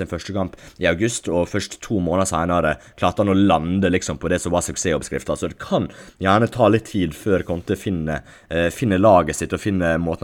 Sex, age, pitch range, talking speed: male, 20-39, 80-100 Hz, 230 wpm